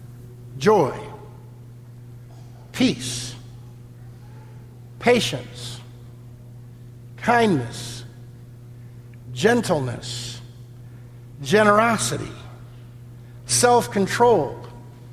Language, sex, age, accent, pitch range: English, male, 60-79, American, 120-185 Hz